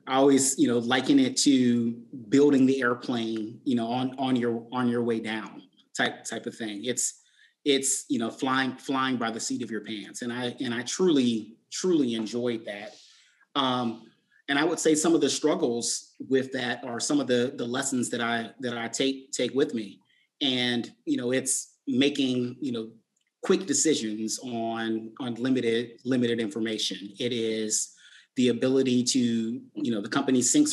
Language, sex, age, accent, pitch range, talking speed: English, male, 30-49, American, 115-130 Hz, 180 wpm